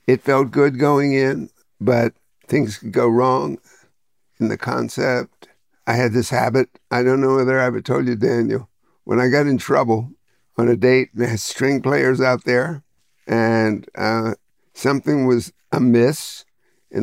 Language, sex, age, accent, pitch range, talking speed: English, male, 60-79, American, 115-130 Hz, 160 wpm